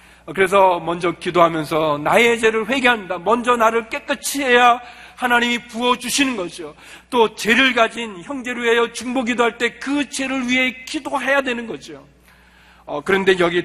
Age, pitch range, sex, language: 40-59, 170-235 Hz, male, Korean